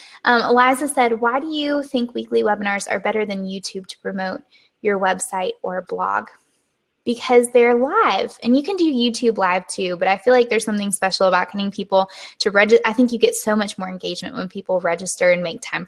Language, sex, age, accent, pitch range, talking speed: English, female, 10-29, American, 200-250 Hz, 210 wpm